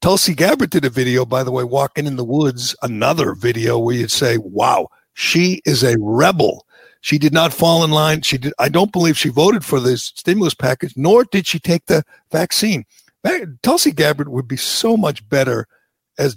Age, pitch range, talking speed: 60-79, 130-160 Hz, 195 wpm